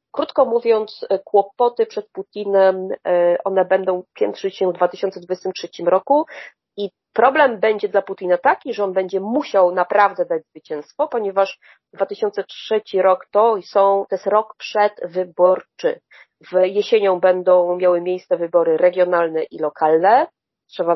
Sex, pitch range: female, 175-200 Hz